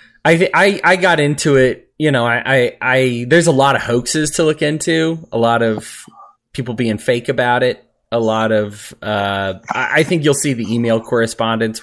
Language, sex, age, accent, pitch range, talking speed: English, male, 20-39, American, 110-145 Hz, 195 wpm